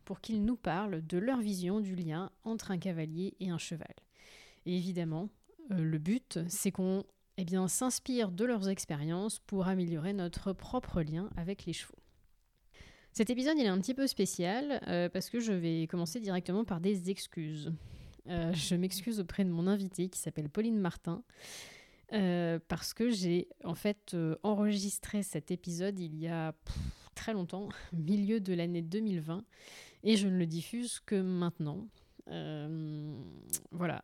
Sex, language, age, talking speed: female, French, 20-39, 165 wpm